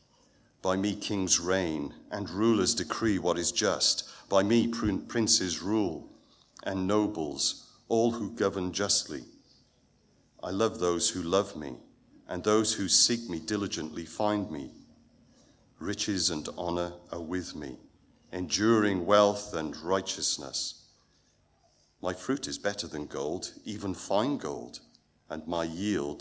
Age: 50-69